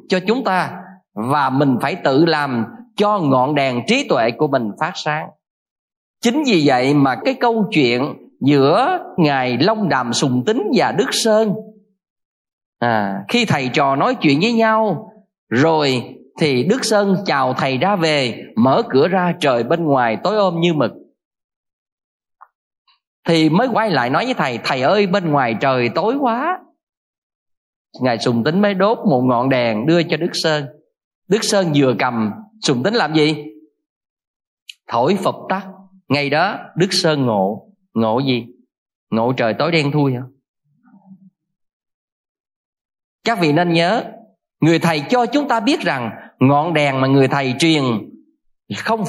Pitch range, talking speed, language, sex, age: 135-215 Hz, 155 wpm, Vietnamese, male, 20-39